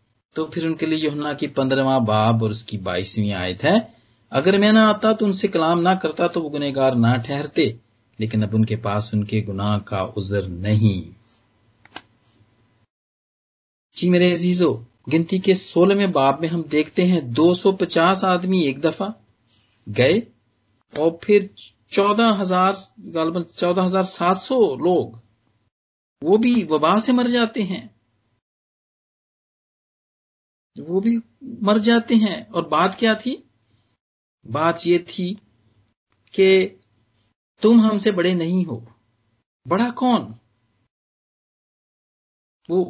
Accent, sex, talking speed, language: native, male, 125 wpm, Hindi